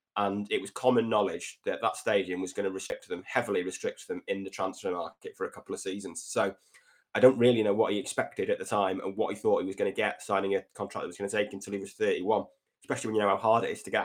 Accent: British